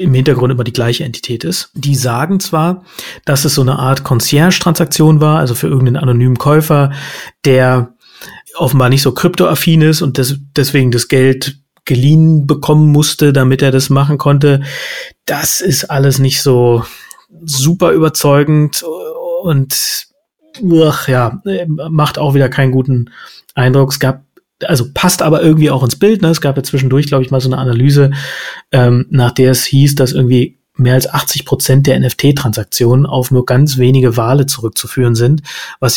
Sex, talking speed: male, 155 wpm